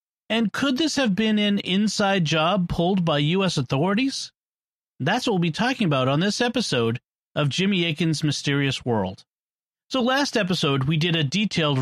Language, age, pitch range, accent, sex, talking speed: English, 40-59, 135-190 Hz, American, male, 170 wpm